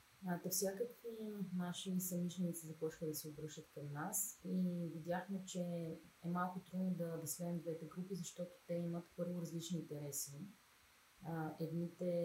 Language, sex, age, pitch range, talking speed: Bulgarian, female, 30-49, 155-175 Hz, 135 wpm